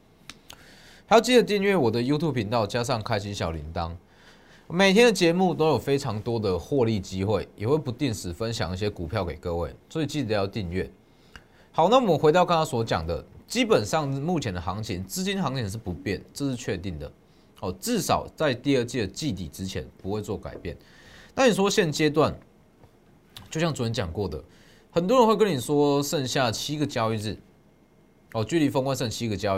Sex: male